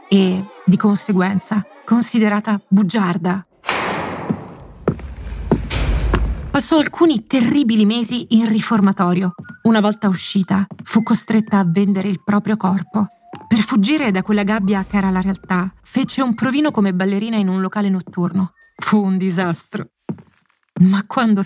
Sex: female